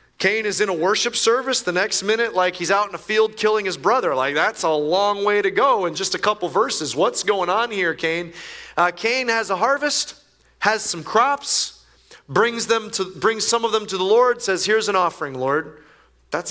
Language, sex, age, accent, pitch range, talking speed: English, male, 30-49, American, 120-200 Hz, 215 wpm